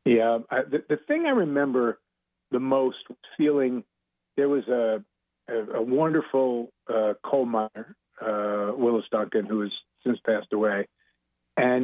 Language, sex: English, male